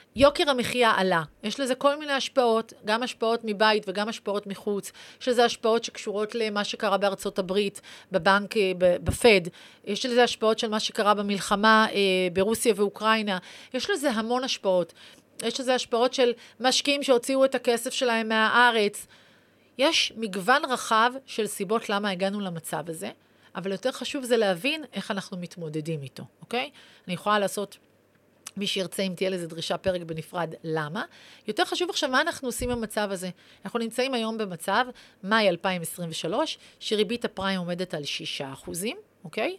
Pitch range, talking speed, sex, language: 190-250 Hz, 150 wpm, female, Hebrew